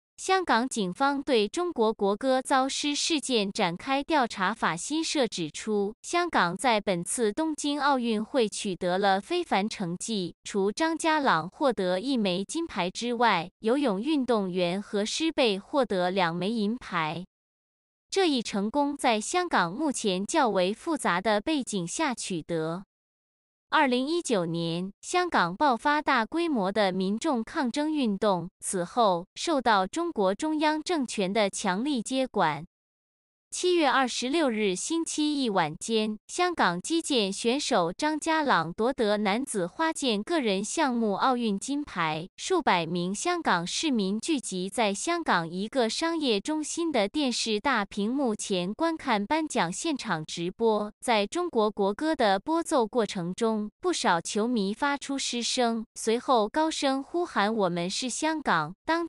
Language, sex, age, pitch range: Chinese, female, 20-39, 195-290 Hz